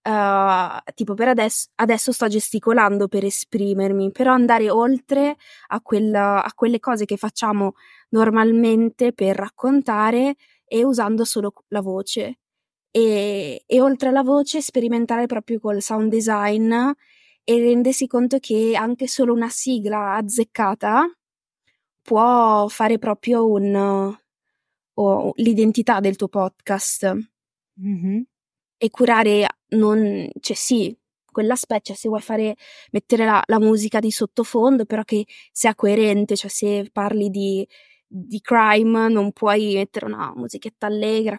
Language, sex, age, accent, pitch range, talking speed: Italian, female, 20-39, native, 205-240 Hz, 115 wpm